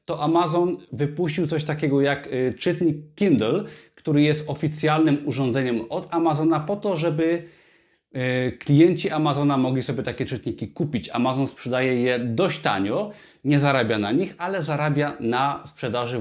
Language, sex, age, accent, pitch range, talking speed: Polish, male, 30-49, native, 125-165 Hz, 135 wpm